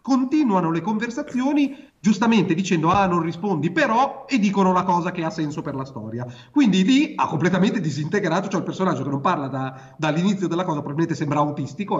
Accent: native